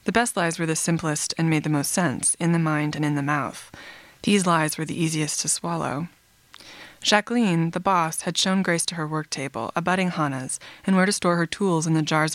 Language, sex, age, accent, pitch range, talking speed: English, female, 20-39, American, 155-195 Hz, 225 wpm